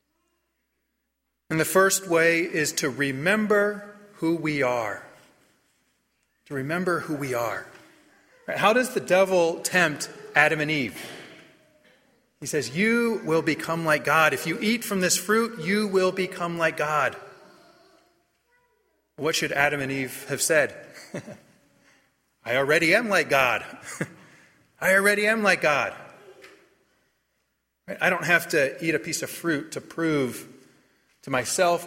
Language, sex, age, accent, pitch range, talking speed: English, male, 30-49, American, 135-190 Hz, 135 wpm